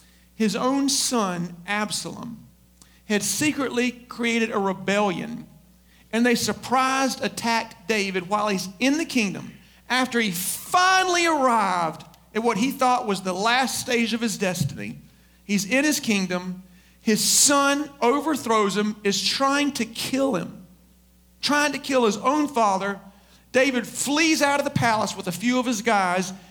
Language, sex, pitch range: English, male, 190-270 Hz